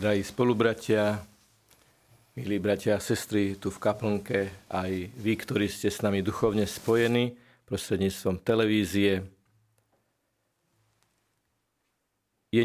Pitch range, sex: 100-120 Hz, male